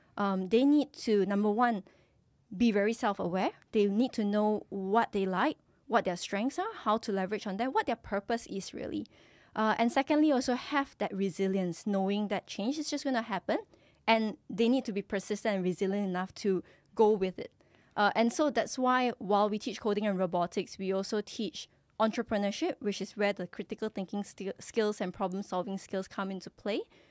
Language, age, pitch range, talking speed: English, 20-39, 195-245 Hz, 190 wpm